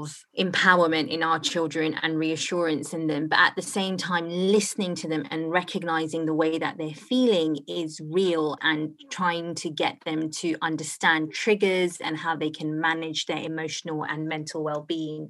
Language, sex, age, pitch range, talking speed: English, female, 20-39, 155-175 Hz, 170 wpm